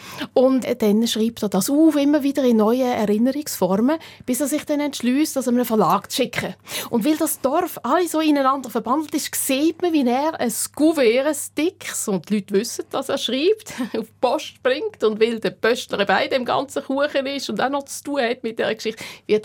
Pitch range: 215-280 Hz